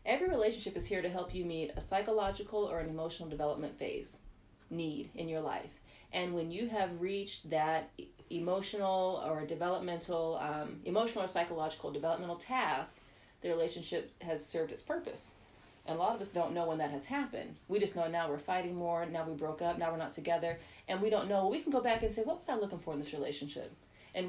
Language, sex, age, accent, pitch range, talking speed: English, female, 40-59, American, 165-215 Hz, 210 wpm